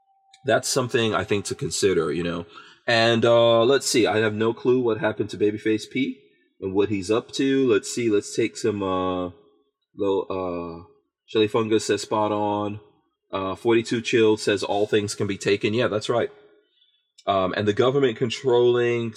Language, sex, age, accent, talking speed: English, male, 30-49, American, 175 wpm